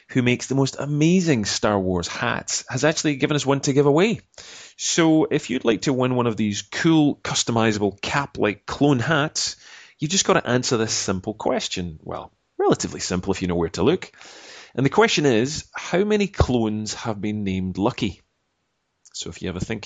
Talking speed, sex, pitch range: 190 wpm, male, 95-140 Hz